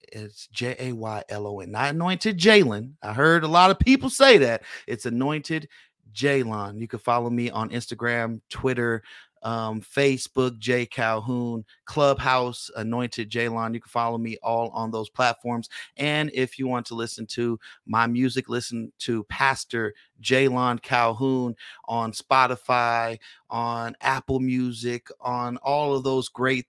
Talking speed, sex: 140 wpm, male